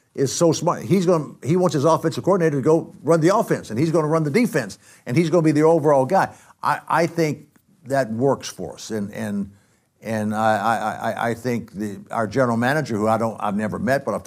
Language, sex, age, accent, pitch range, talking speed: English, male, 60-79, American, 115-150 Hz, 240 wpm